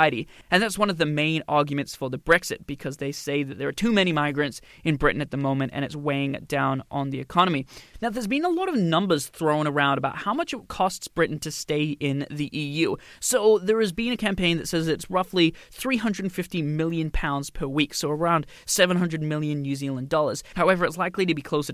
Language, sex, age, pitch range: English, male, 20-39, 145-190 Hz